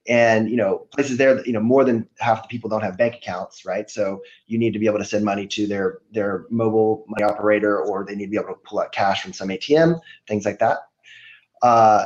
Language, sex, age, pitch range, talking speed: English, male, 20-39, 105-125 Hz, 245 wpm